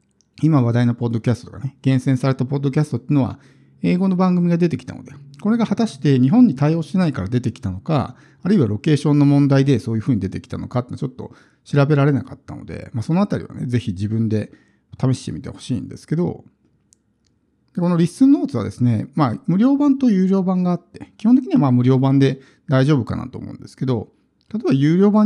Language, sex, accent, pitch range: Japanese, male, native, 120-170 Hz